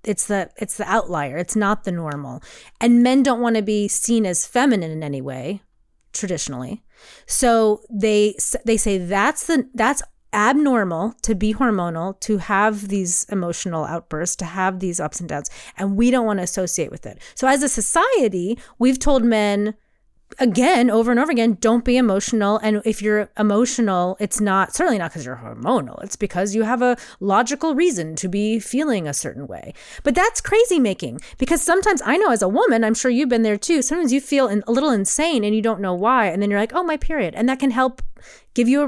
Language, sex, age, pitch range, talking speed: English, female, 30-49, 200-275 Hz, 205 wpm